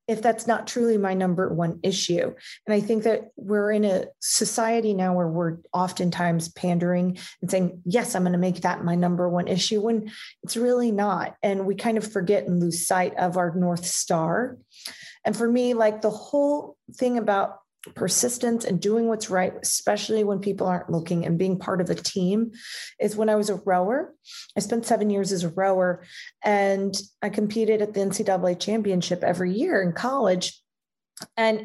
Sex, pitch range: female, 180-225 Hz